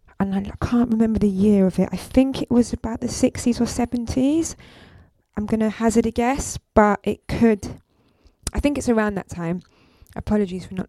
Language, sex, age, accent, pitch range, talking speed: English, female, 20-39, British, 185-225 Hz, 200 wpm